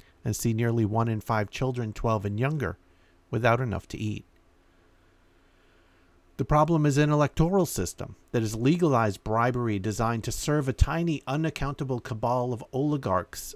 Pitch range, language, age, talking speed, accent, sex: 100-130 Hz, English, 50-69, 145 wpm, American, male